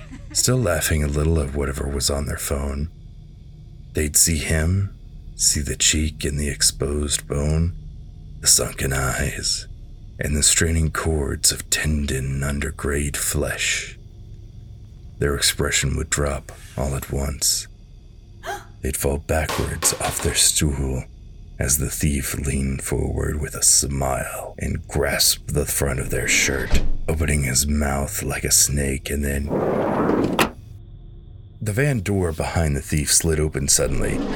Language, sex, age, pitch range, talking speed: English, male, 40-59, 70-85 Hz, 135 wpm